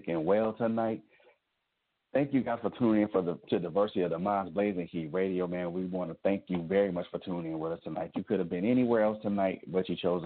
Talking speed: 250 wpm